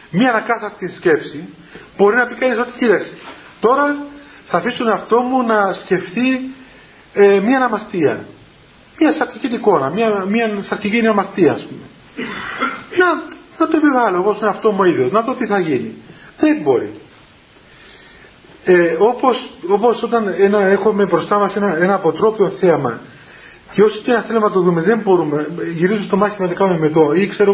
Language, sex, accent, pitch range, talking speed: Greek, male, native, 185-245 Hz, 160 wpm